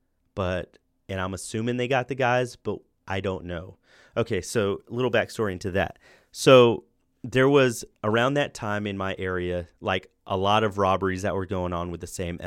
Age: 30-49